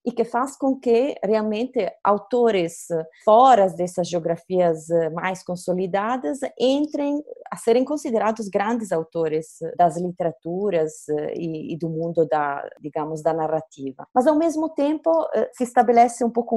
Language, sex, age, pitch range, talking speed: Portuguese, female, 30-49, 170-235 Hz, 130 wpm